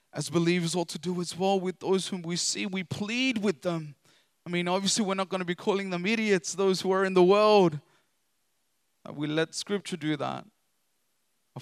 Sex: male